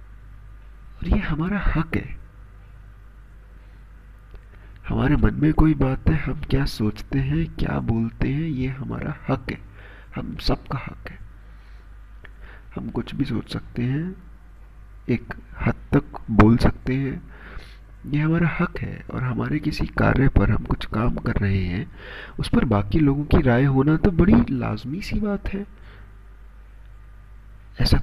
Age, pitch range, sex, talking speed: 50-69, 100-125 Hz, male, 145 wpm